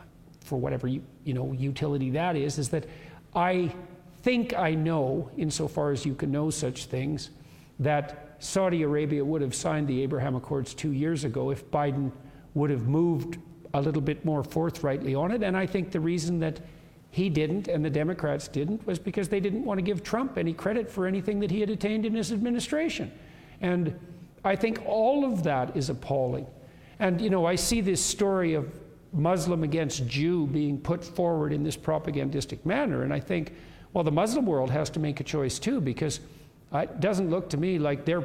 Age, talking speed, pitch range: 50-69, 195 wpm, 145-180 Hz